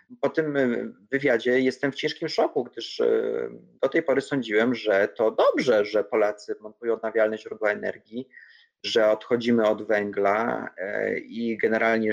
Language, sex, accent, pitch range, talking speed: Polish, male, native, 120-150 Hz, 135 wpm